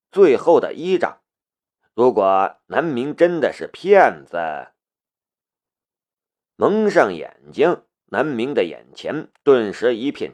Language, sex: Chinese, male